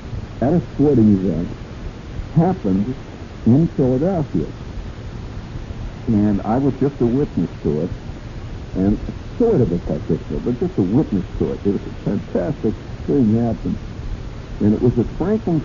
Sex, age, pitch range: male, 60-79, 95-120 Hz